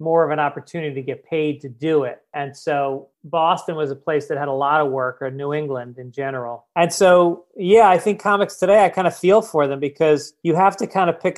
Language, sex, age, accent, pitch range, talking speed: English, male, 30-49, American, 145-170 Hz, 250 wpm